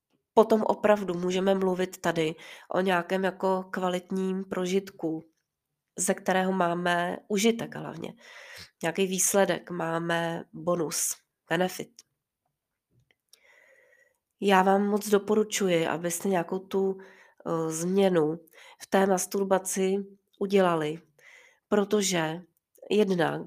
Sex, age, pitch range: female, 30-49, 175-205 Hz